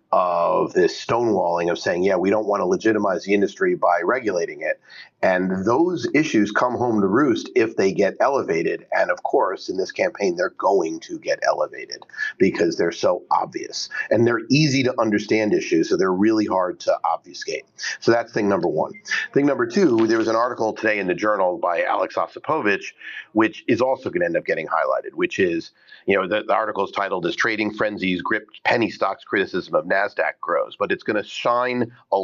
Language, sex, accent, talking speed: English, male, American, 200 wpm